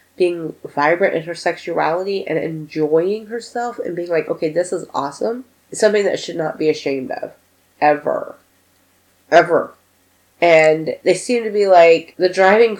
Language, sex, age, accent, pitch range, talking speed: English, female, 30-49, American, 160-220 Hz, 155 wpm